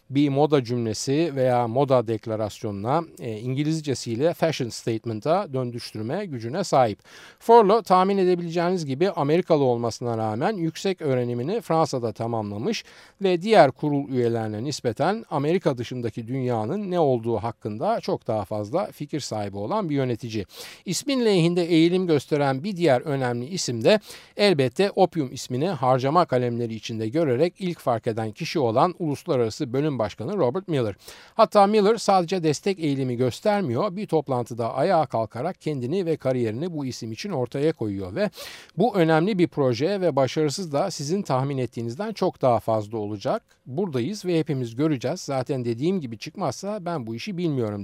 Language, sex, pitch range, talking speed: Turkish, male, 120-175 Hz, 145 wpm